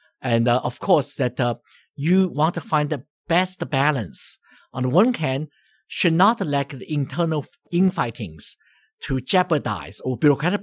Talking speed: 150 wpm